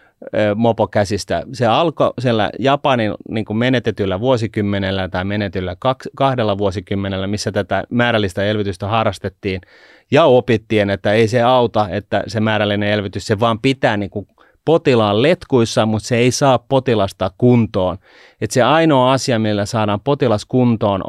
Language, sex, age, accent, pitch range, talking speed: Finnish, male, 30-49, native, 100-120 Hz, 140 wpm